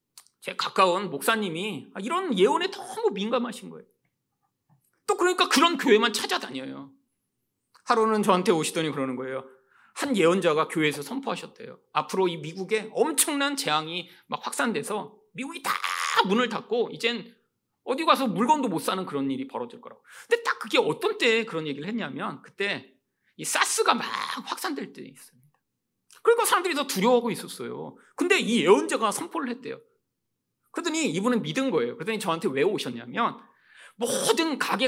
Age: 40-59